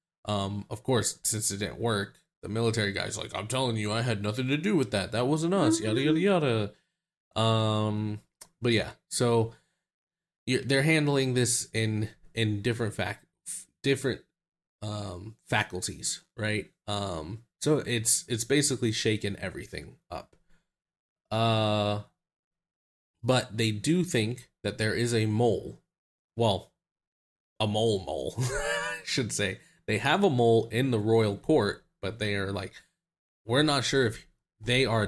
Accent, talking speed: American, 145 wpm